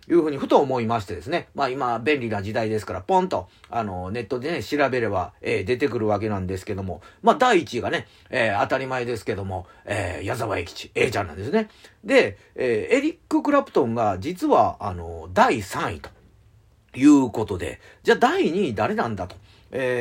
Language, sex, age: Japanese, male, 40-59